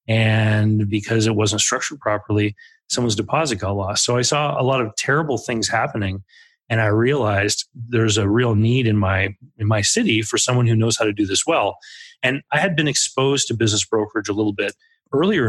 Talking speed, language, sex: 200 wpm, English, male